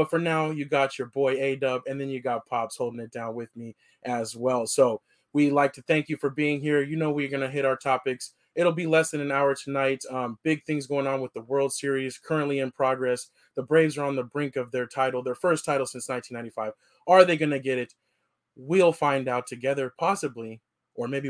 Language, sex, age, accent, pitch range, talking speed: English, male, 20-39, American, 130-155 Hz, 235 wpm